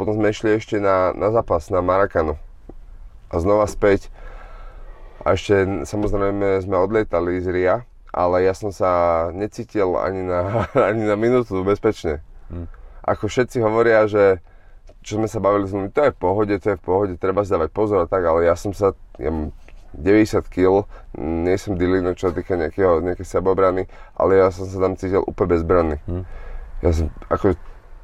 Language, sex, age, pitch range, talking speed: Czech, male, 30-49, 90-110 Hz, 165 wpm